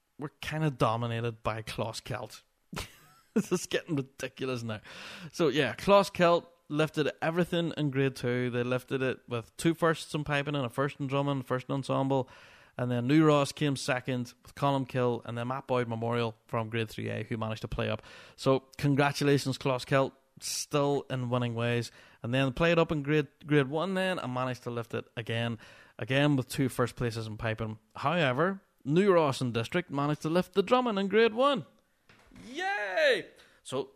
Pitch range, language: 125-165 Hz, English